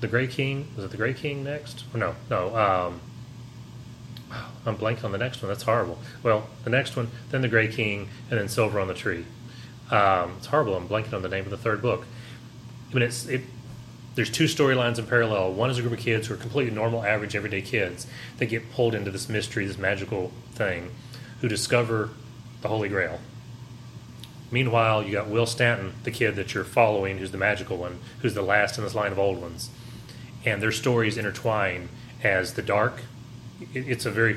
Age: 30-49